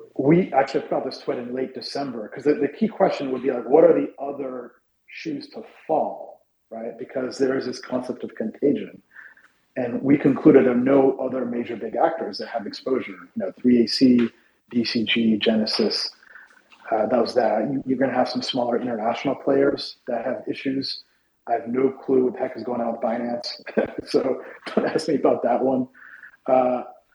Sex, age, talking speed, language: male, 40-59, 185 wpm, English